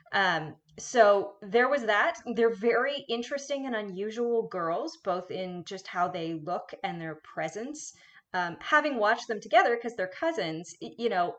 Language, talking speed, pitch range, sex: English, 160 wpm, 170-230 Hz, female